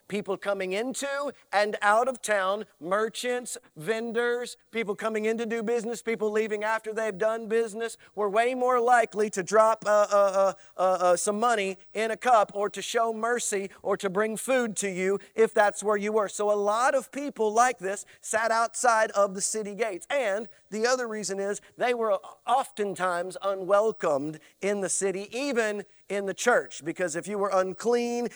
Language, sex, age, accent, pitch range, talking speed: English, male, 40-59, American, 200-245 Hz, 180 wpm